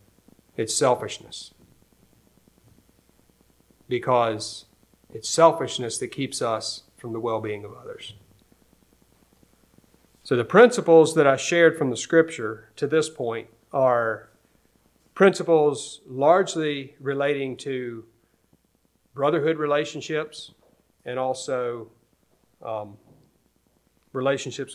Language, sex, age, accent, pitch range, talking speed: English, male, 40-59, American, 115-155 Hz, 85 wpm